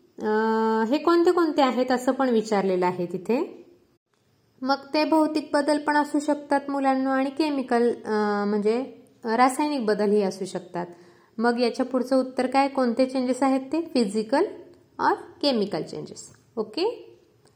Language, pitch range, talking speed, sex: Marathi, 210-270 Hz, 135 wpm, female